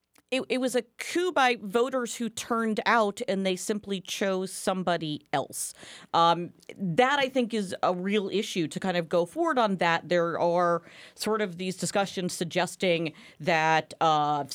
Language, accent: English, American